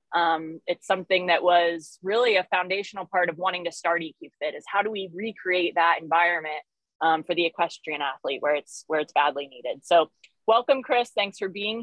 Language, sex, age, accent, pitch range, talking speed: English, female, 20-39, American, 170-215 Hz, 195 wpm